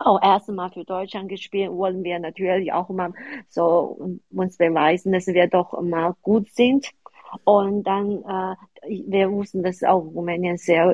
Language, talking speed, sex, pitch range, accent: German, 165 wpm, female, 175-200 Hz, German